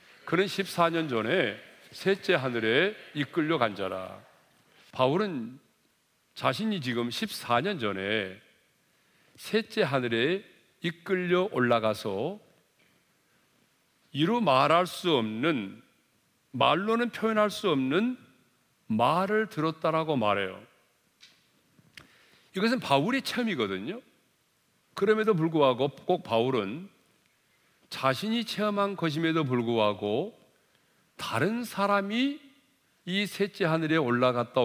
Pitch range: 120-195 Hz